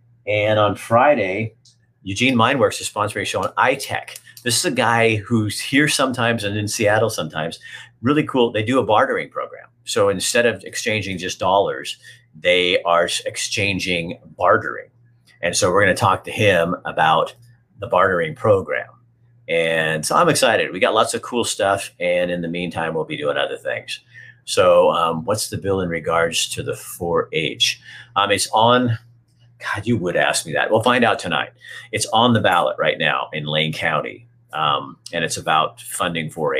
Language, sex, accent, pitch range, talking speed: English, male, American, 95-120 Hz, 175 wpm